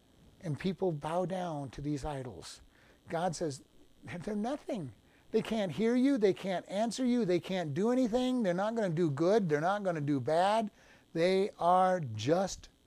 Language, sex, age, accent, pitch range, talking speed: English, male, 60-79, American, 145-205 Hz, 175 wpm